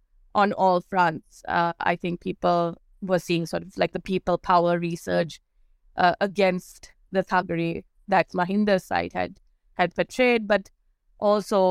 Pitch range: 175-195 Hz